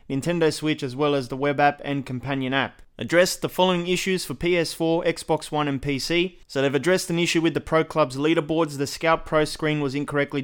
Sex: male